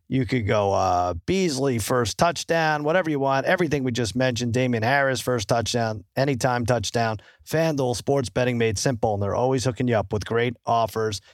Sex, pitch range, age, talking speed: male, 115-150 Hz, 40-59, 180 wpm